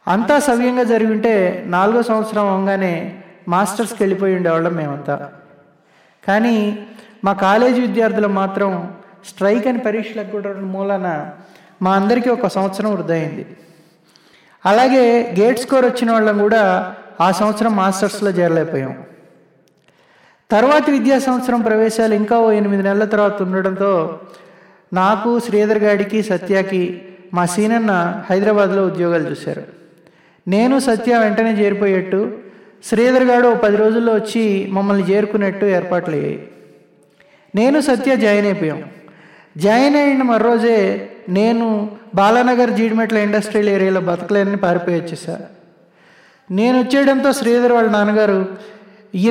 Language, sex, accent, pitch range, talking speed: Telugu, male, native, 185-225 Hz, 105 wpm